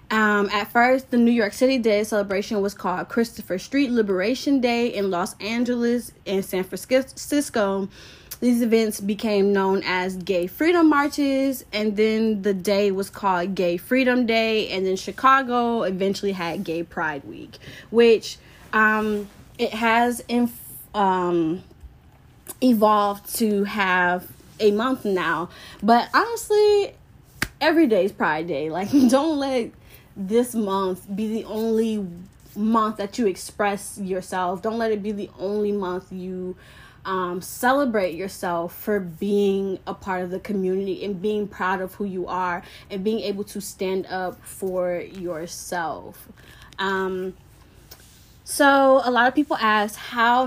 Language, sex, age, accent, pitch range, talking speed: English, female, 20-39, American, 190-235 Hz, 140 wpm